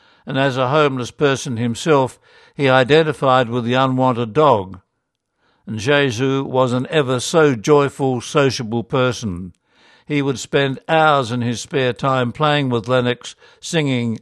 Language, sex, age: English, male, 60-79